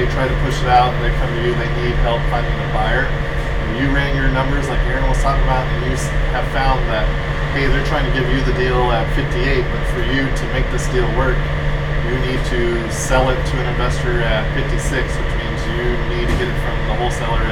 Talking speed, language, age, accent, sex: 235 wpm, English, 20-39, American, male